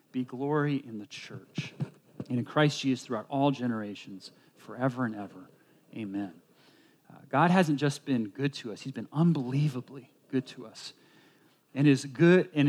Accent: American